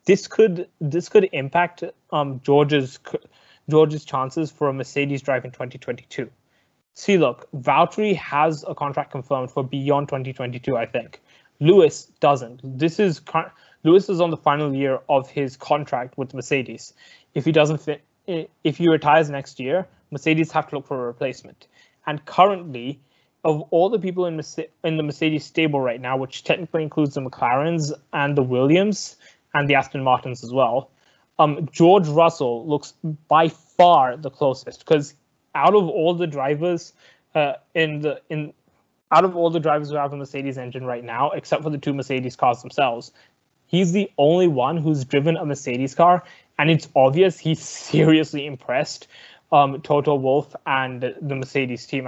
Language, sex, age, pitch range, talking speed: English, male, 20-39, 135-165 Hz, 175 wpm